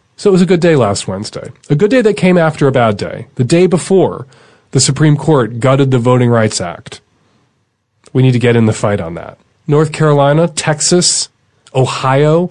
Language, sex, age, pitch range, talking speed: English, male, 30-49, 110-150 Hz, 195 wpm